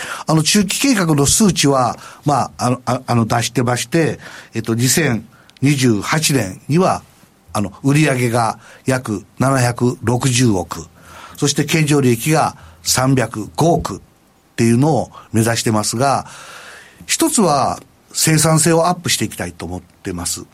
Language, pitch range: Japanese, 105-155 Hz